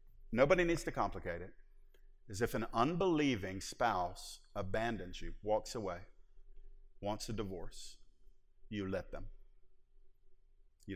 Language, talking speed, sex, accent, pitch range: English, 115 wpm, male, American, 105-160 Hz